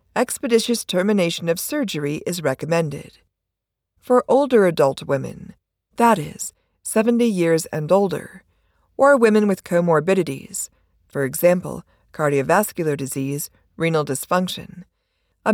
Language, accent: English, American